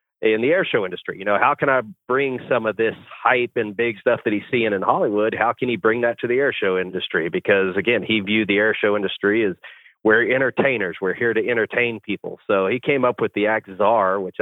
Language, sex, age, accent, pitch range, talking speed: English, male, 30-49, American, 105-120 Hz, 240 wpm